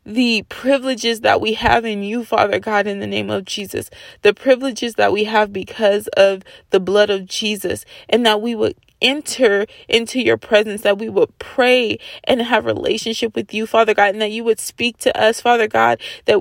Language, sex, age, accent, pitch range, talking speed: English, female, 20-39, American, 180-220 Hz, 200 wpm